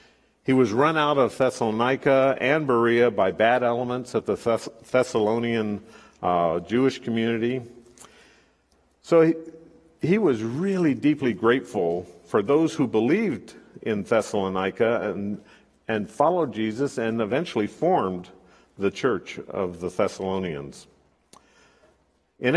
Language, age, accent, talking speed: English, 50-69, American, 115 wpm